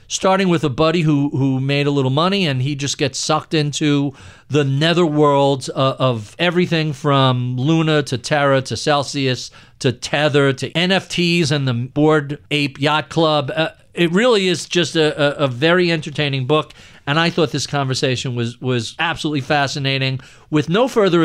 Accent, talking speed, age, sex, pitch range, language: American, 165 wpm, 50-69, male, 135-180 Hz, English